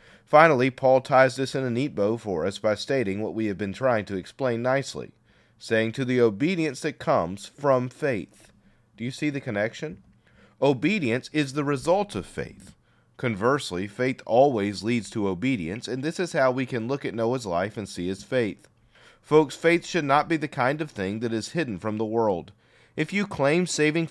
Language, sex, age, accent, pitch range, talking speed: English, male, 40-59, American, 100-135 Hz, 195 wpm